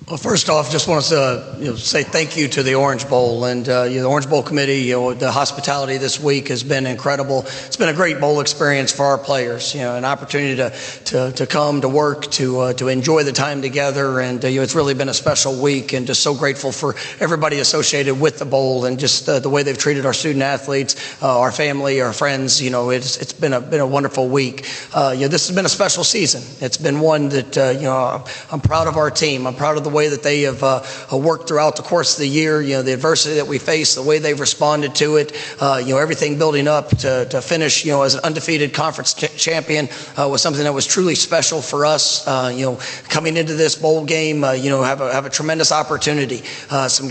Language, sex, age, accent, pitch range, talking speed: English, male, 40-59, American, 135-155 Hz, 255 wpm